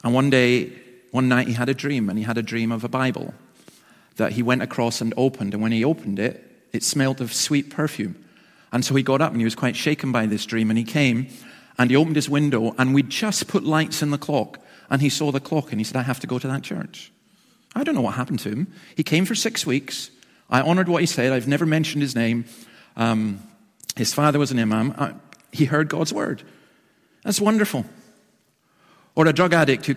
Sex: male